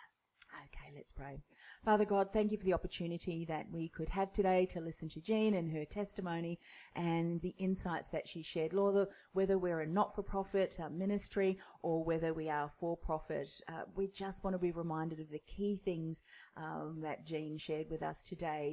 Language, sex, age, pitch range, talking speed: English, female, 40-59, 155-185 Hz, 175 wpm